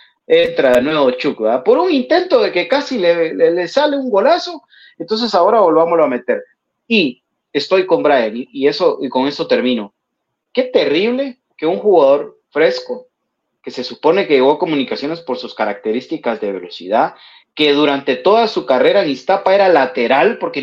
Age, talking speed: 30-49, 170 wpm